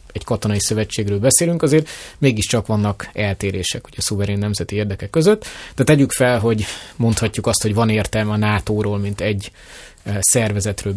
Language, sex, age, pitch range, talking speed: Hungarian, male, 20-39, 105-130 Hz, 150 wpm